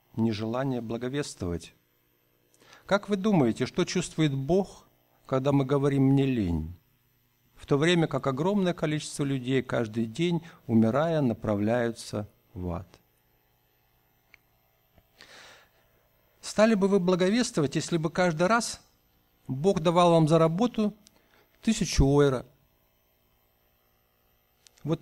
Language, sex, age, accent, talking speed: Russian, male, 50-69, native, 100 wpm